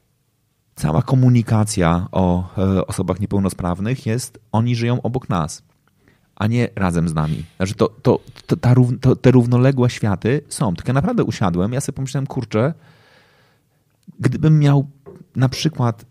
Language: Polish